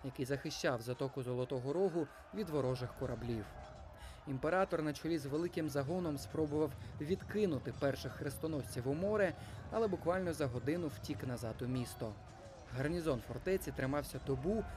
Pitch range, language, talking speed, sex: 130-170 Hz, Ukrainian, 130 wpm, male